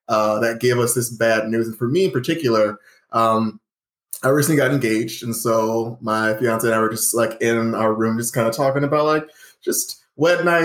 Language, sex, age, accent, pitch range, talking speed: English, male, 20-39, American, 110-130 Hz, 210 wpm